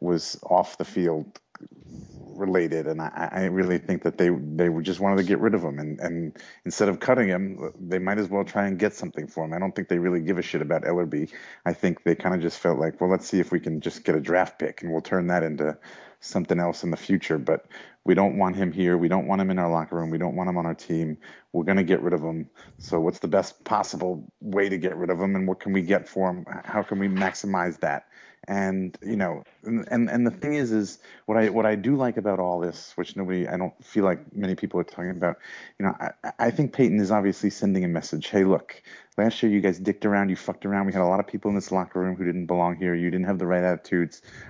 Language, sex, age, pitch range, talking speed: English, male, 30-49, 90-105 Hz, 265 wpm